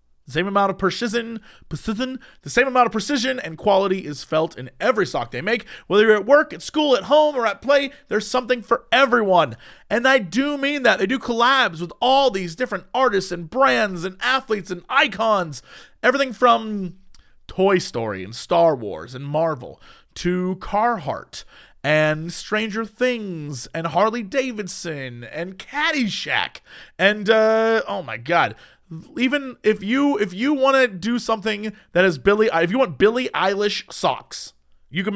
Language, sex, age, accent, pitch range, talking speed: English, male, 30-49, American, 165-250 Hz, 165 wpm